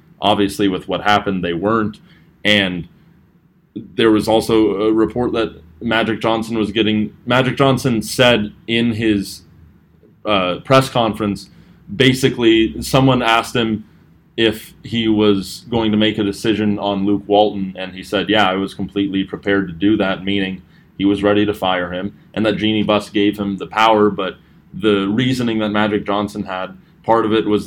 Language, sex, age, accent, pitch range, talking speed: English, male, 20-39, American, 100-115 Hz, 165 wpm